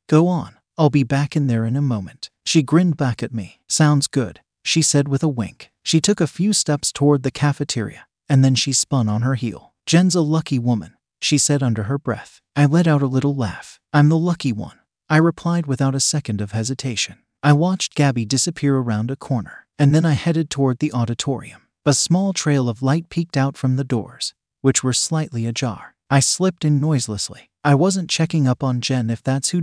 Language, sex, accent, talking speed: English, male, American, 210 wpm